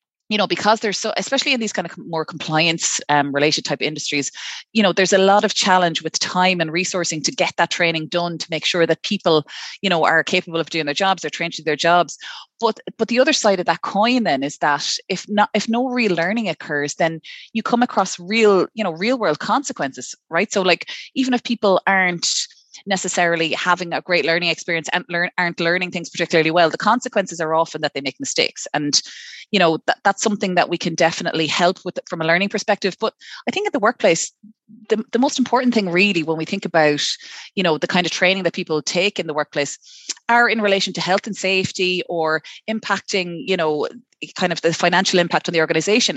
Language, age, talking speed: English, 20-39, 220 wpm